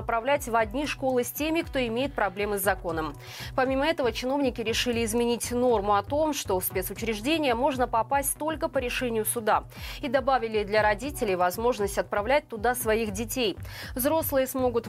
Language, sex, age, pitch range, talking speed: Russian, female, 20-39, 205-270 Hz, 155 wpm